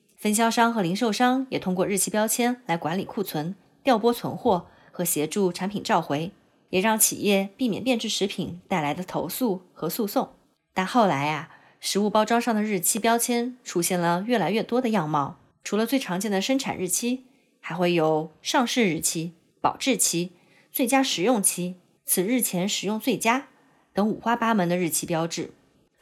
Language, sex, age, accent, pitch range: Chinese, female, 20-39, native, 175-230 Hz